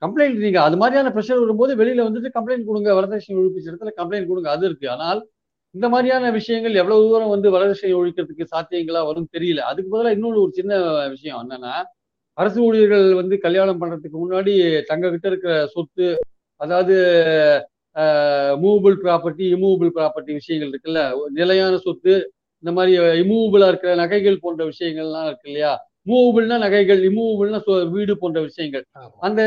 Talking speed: 140 wpm